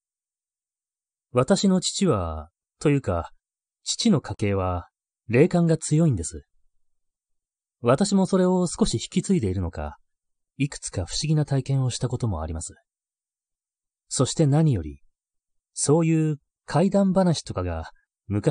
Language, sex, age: Japanese, male, 30-49